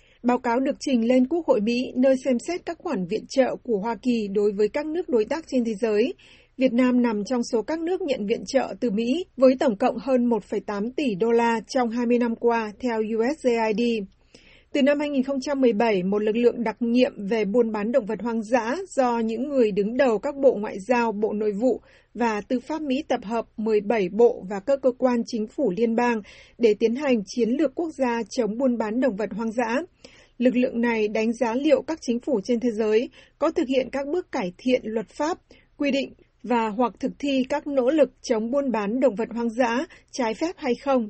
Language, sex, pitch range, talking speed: Vietnamese, female, 225-265 Hz, 220 wpm